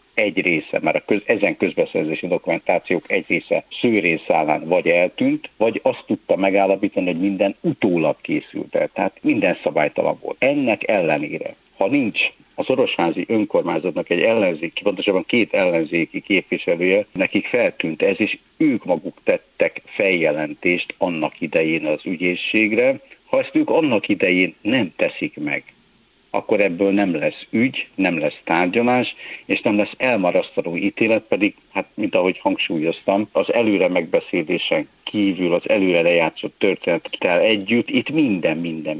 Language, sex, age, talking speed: Hungarian, male, 60-79, 135 wpm